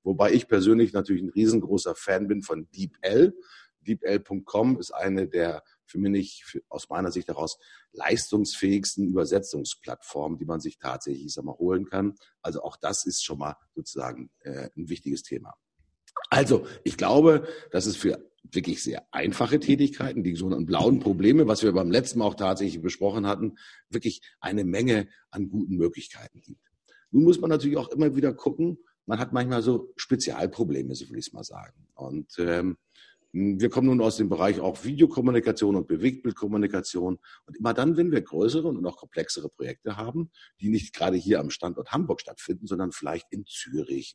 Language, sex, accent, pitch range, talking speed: German, male, German, 95-130 Hz, 170 wpm